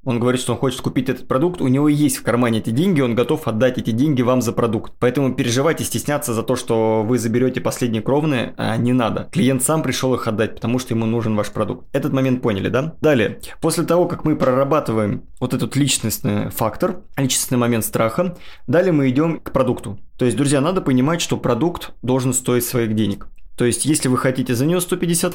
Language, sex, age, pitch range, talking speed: Russian, male, 20-39, 115-145 Hz, 205 wpm